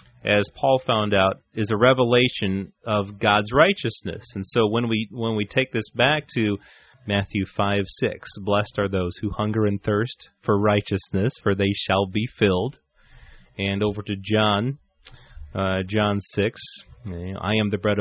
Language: English